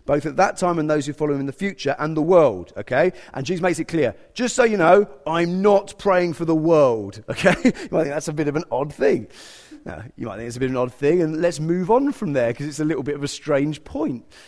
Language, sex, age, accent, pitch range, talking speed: English, male, 30-49, British, 135-190 Hz, 280 wpm